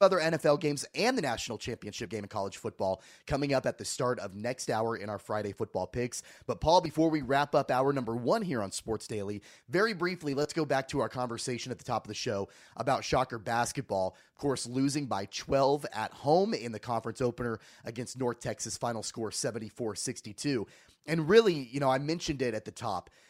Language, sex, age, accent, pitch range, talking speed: English, male, 30-49, American, 115-145 Hz, 210 wpm